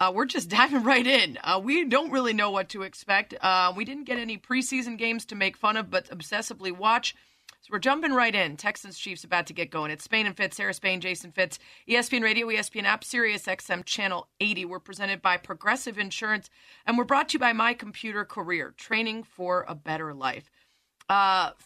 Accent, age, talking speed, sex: American, 30-49, 210 wpm, female